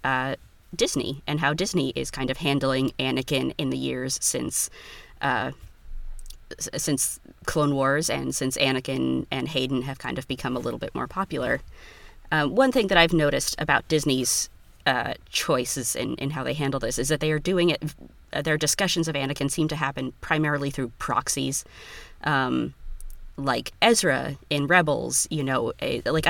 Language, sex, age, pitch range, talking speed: English, female, 20-39, 130-150 Hz, 165 wpm